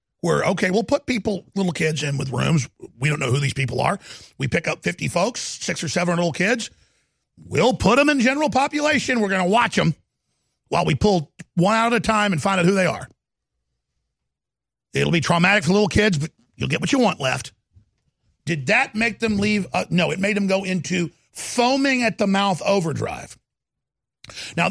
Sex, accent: male, American